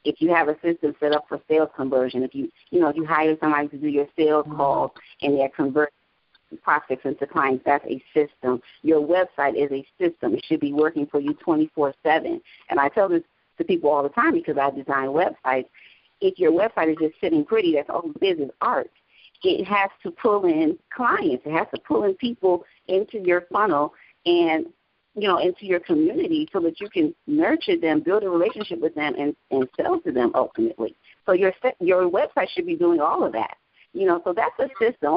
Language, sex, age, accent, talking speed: English, female, 40-59, American, 210 wpm